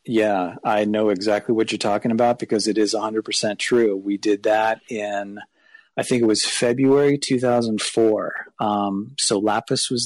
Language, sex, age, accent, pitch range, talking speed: English, male, 40-59, American, 105-125 Hz, 180 wpm